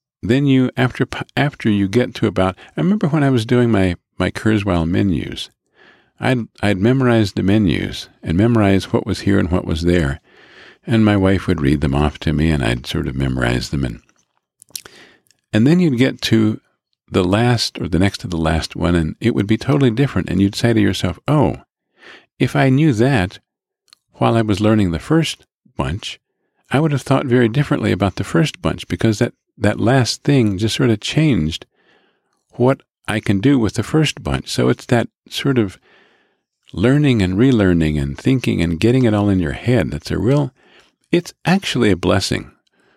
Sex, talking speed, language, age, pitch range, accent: male, 190 wpm, English, 50-69, 85-125 Hz, American